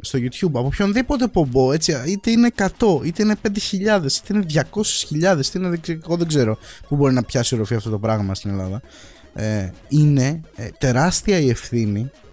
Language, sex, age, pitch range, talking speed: Greek, male, 20-39, 120-170 Hz, 170 wpm